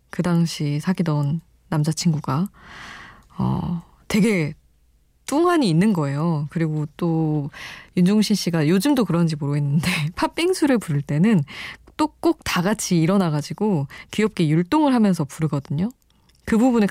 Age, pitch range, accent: 20-39, 155-210 Hz, native